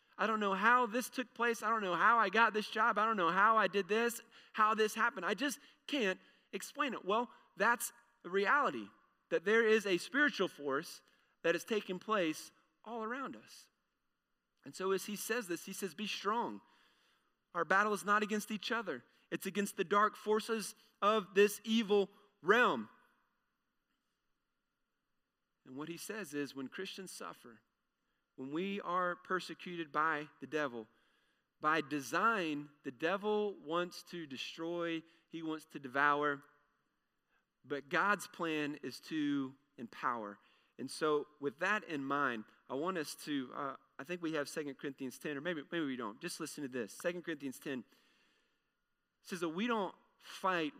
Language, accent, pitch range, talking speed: English, American, 145-210 Hz, 165 wpm